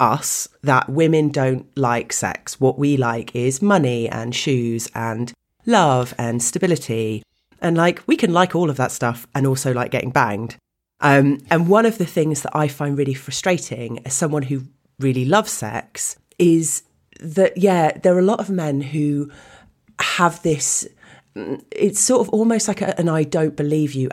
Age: 30-49